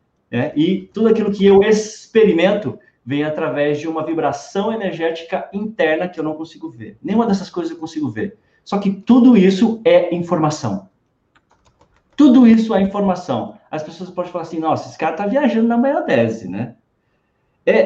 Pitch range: 145-215 Hz